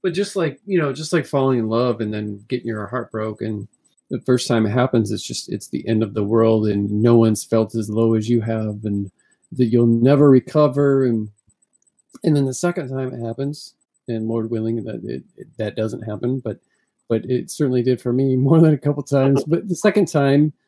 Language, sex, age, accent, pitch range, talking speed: English, male, 40-59, American, 115-140 Hz, 225 wpm